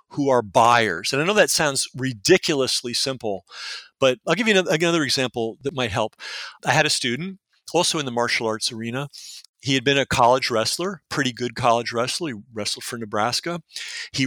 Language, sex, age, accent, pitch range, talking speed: English, male, 50-69, American, 120-150 Hz, 185 wpm